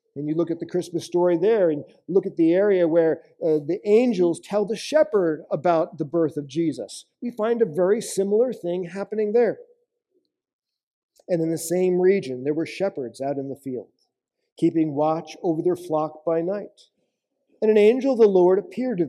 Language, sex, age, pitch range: English, male, 50-69, 180-240 Hz